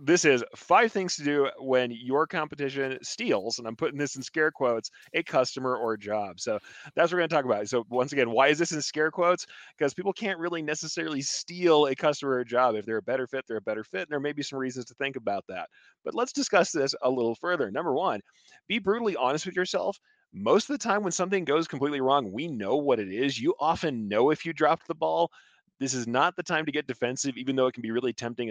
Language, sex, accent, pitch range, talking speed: English, male, American, 120-165 Hz, 255 wpm